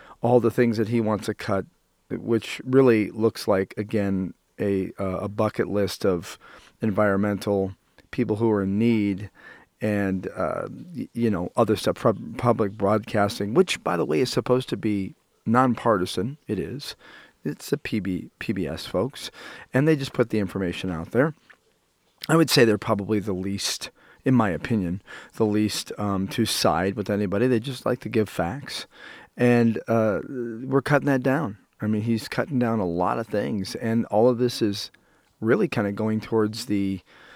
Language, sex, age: English, male, 40-59